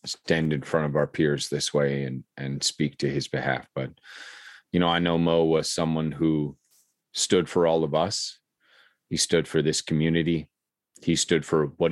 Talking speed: 185 wpm